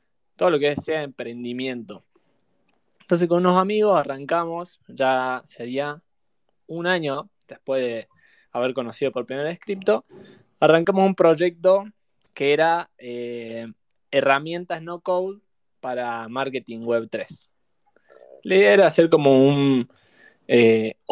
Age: 20-39